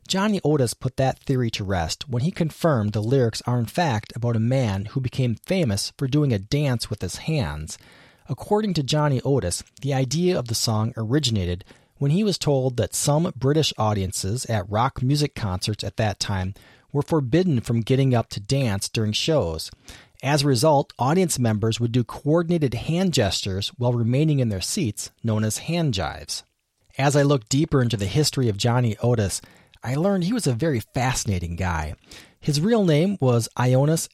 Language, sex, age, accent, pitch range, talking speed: English, male, 40-59, American, 110-145 Hz, 185 wpm